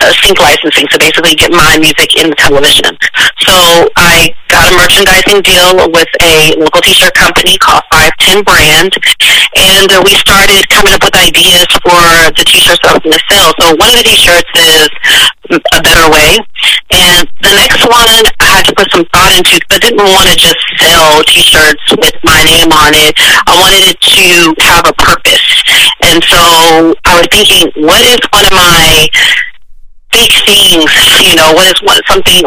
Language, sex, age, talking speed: English, female, 40-59, 180 wpm